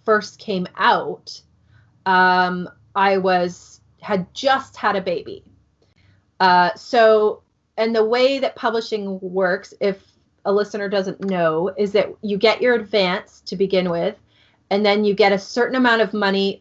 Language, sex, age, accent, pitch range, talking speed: English, female, 30-49, American, 185-220 Hz, 150 wpm